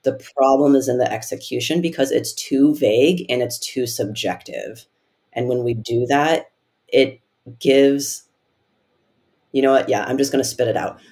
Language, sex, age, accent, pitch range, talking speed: English, female, 30-49, American, 125-150 Hz, 175 wpm